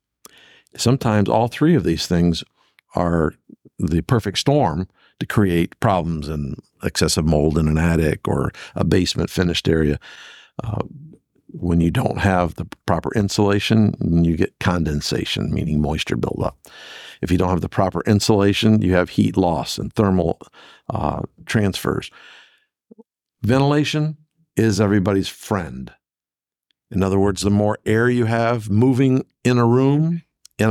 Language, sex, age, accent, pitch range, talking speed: English, male, 50-69, American, 90-120 Hz, 135 wpm